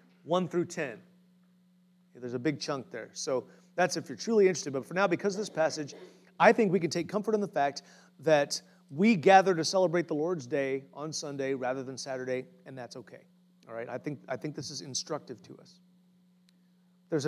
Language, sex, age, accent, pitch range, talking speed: English, male, 30-49, American, 160-200 Hz, 205 wpm